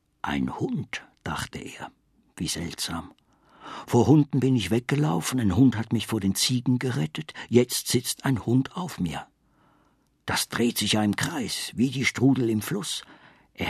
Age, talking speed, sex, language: 60-79, 160 wpm, male, German